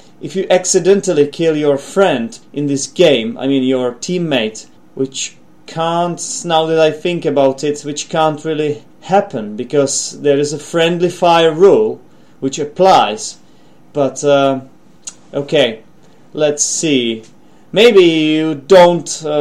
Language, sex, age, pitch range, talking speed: English, male, 30-49, 135-185 Hz, 130 wpm